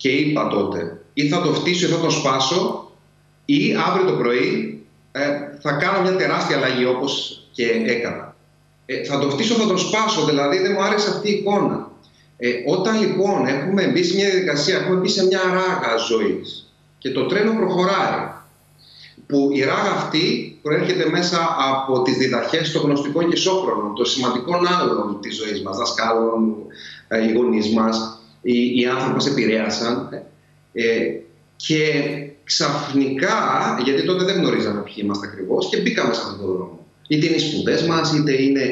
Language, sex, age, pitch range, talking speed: Greek, male, 30-49, 125-185 Hz, 160 wpm